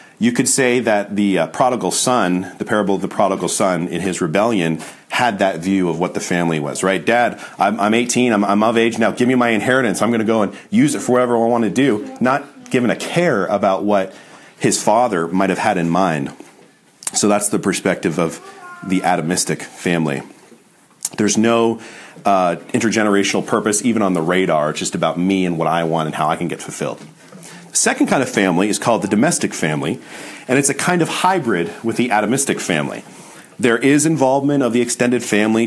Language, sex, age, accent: English, male, 40-59, American